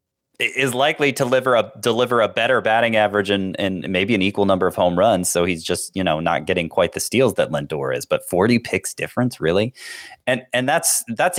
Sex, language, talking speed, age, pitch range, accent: male, English, 210 wpm, 30-49, 90-115 Hz, American